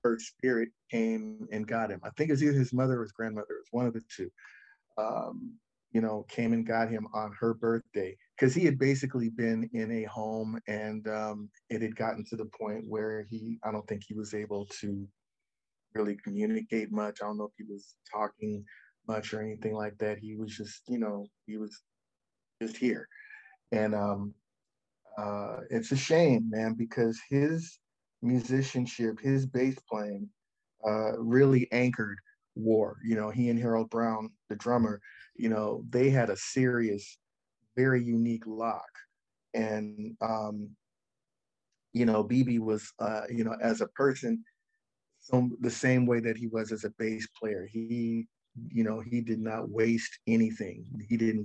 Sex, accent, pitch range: male, American, 110-125 Hz